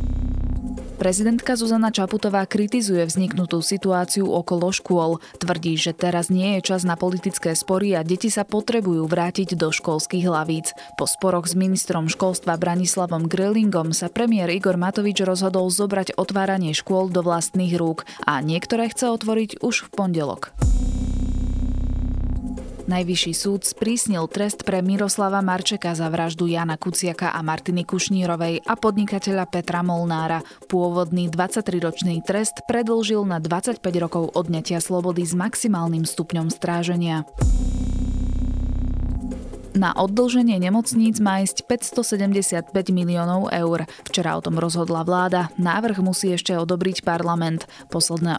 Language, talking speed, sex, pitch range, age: Slovak, 125 wpm, female, 165-195 Hz, 20-39